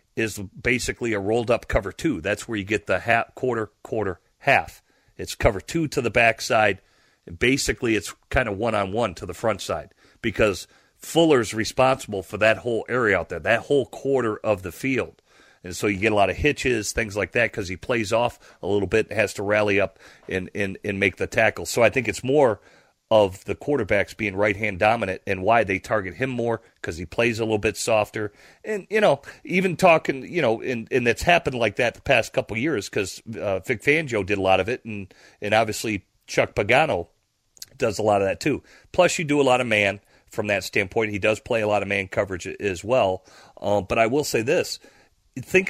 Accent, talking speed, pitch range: American, 215 wpm, 100-125 Hz